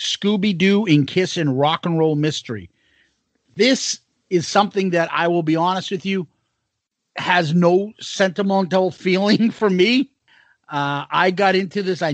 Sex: male